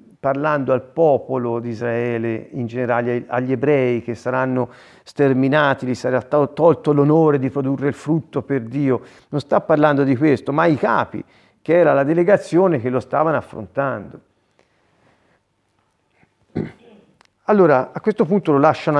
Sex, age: male, 40-59